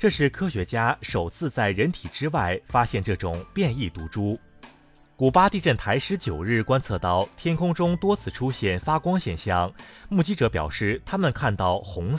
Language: Chinese